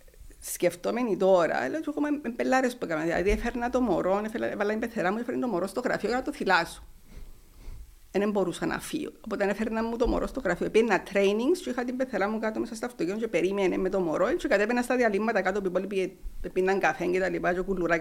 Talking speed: 195 wpm